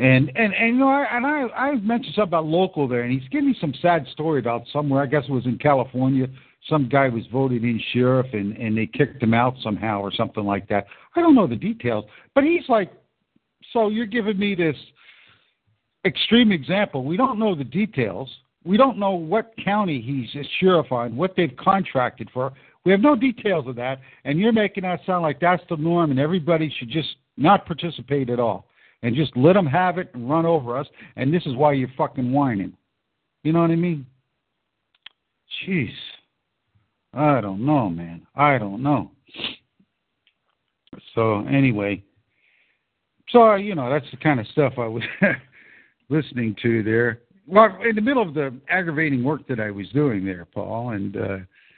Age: 60-79